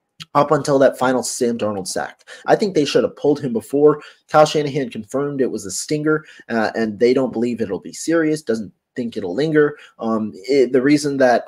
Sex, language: male, English